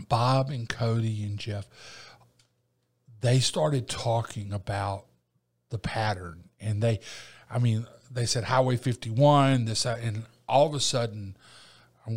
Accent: American